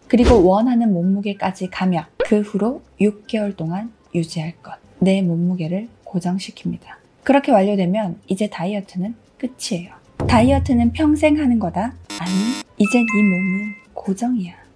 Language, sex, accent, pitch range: Korean, female, native, 190-240 Hz